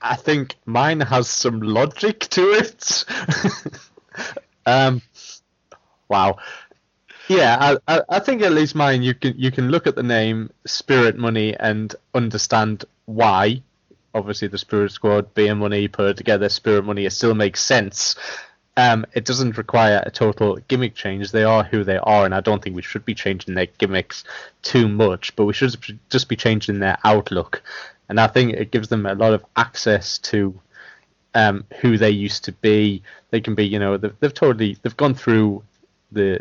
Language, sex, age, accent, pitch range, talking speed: English, male, 20-39, British, 100-115 Hz, 175 wpm